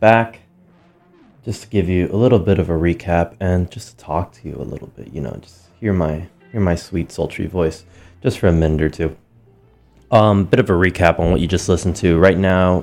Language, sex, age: English, male, 20-39